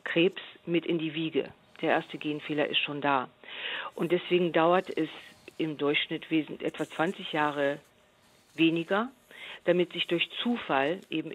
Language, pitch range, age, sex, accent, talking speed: German, 155-180 Hz, 50-69, female, German, 135 wpm